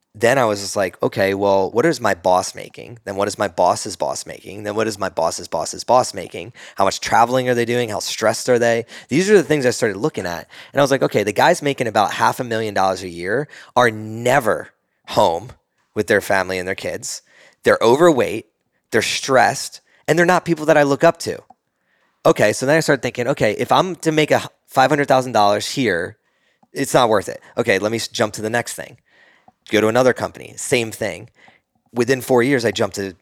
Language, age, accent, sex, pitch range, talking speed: English, 20-39, American, male, 100-125 Hz, 215 wpm